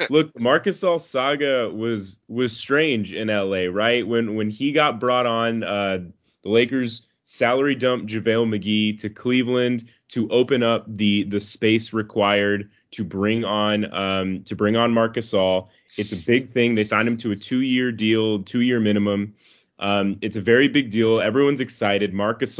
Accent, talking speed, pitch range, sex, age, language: American, 165 wpm, 105-125 Hz, male, 20-39, English